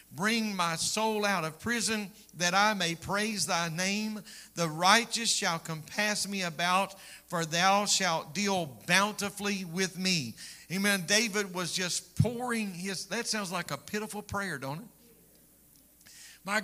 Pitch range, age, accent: 180-215 Hz, 50-69, American